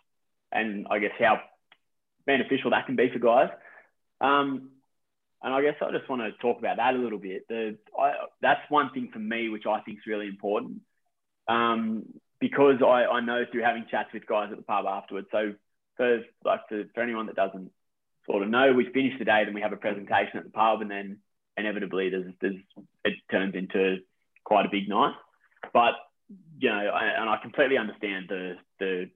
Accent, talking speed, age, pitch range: Australian, 200 wpm, 20-39, 100-125 Hz